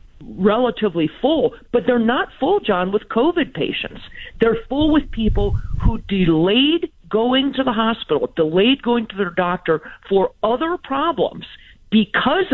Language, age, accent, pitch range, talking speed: English, 50-69, American, 165-240 Hz, 140 wpm